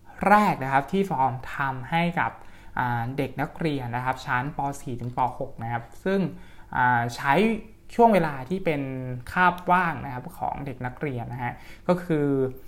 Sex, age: male, 20-39